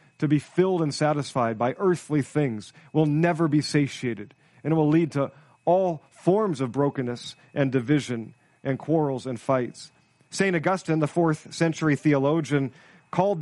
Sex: male